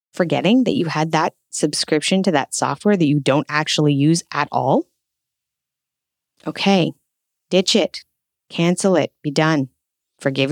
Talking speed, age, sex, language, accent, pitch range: 135 wpm, 20-39, female, English, American, 150-195 Hz